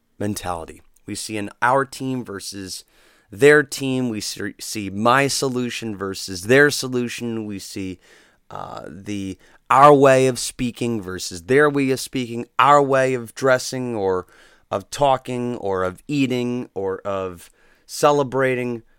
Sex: male